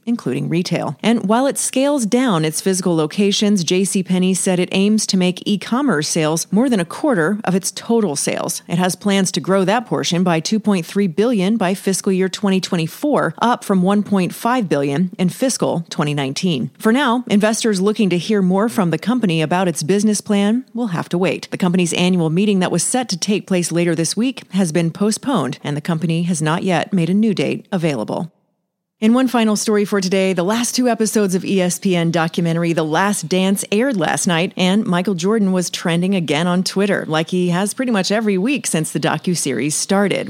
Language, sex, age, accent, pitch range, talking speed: English, female, 30-49, American, 170-215 Hz, 195 wpm